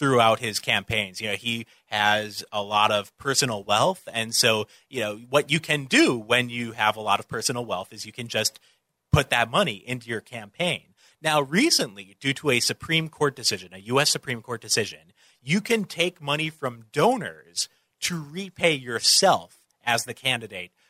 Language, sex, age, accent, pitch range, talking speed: English, male, 30-49, American, 115-155 Hz, 180 wpm